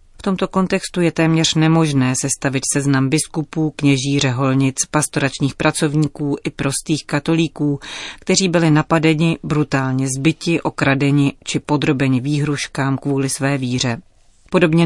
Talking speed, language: 115 wpm, Czech